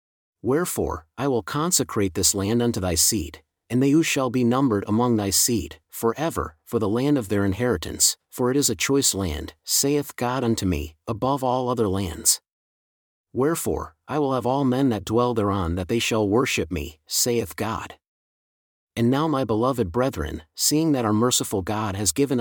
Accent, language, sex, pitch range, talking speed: American, English, male, 95-130 Hz, 180 wpm